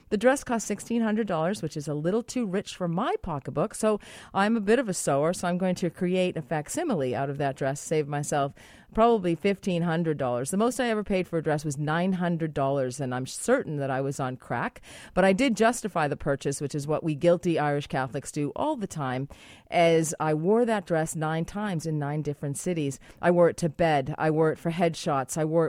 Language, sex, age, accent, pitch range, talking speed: English, female, 40-59, American, 140-180 Hz, 215 wpm